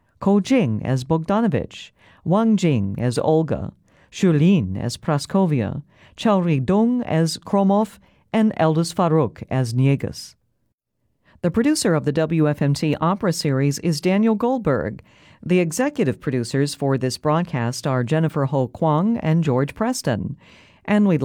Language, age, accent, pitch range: Chinese, 50-69, American, 130-185 Hz